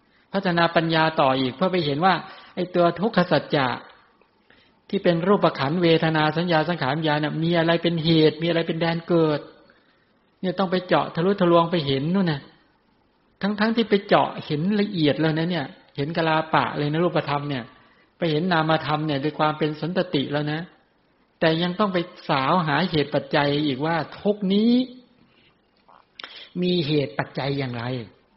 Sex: male